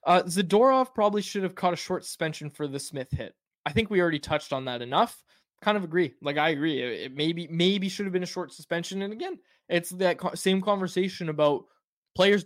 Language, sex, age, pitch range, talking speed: English, male, 20-39, 140-185 Hz, 215 wpm